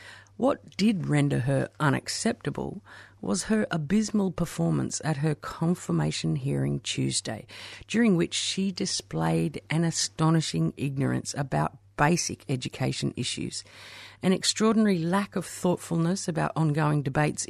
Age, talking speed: 50-69, 115 wpm